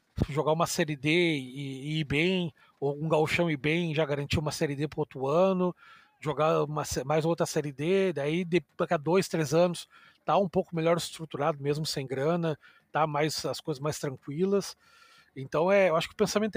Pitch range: 140-170 Hz